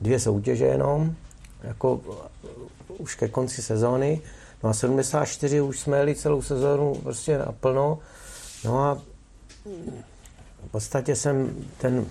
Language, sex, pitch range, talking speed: Czech, male, 115-140 Hz, 120 wpm